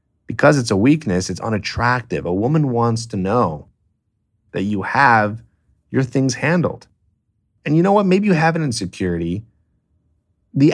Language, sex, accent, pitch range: English, male, American, 95-120 Hz